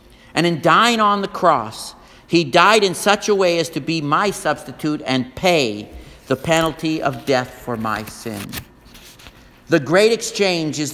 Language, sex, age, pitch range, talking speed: English, male, 50-69, 120-180 Hz, 165 wpm